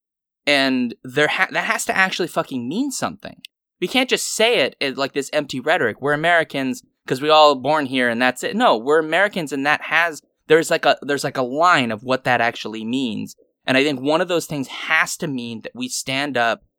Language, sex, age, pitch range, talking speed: English, male, 20-39, 120-155 Hz, 220 wpm